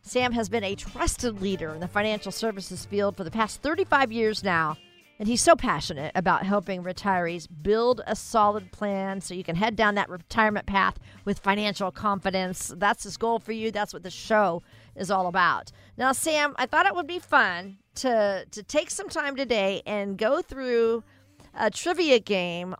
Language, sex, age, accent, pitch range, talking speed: English, female, 50-69, American, 190-260 Hz, 185 wpm